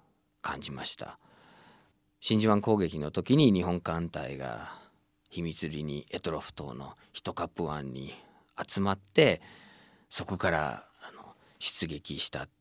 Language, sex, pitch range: Japanese, male, 80-100 Hz